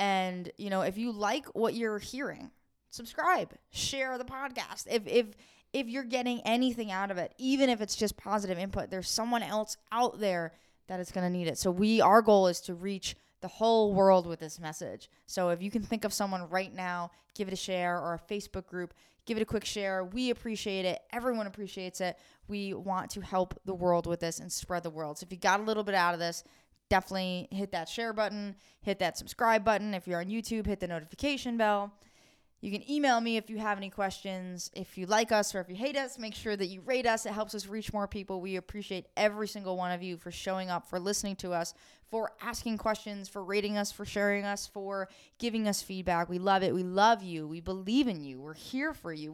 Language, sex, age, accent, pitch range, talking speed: English, female, 20-39, American, 185-225 Hz, 230 wpm